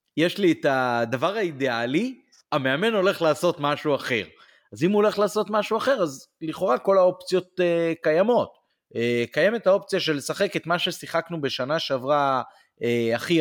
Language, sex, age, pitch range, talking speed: Hebrew, male, 30-49, 125-170 Hz, 155 wpm